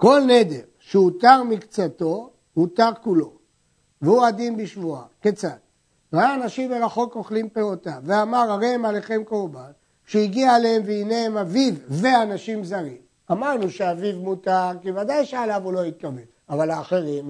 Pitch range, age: 170-235 Hz, 60-79